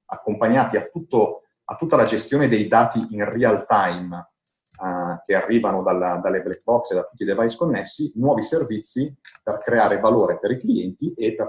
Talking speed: 185 wpm